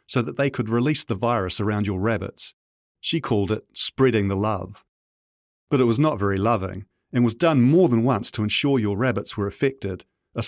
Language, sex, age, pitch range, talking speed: English, male, 40-59, 105-125 Hz, 200 wpm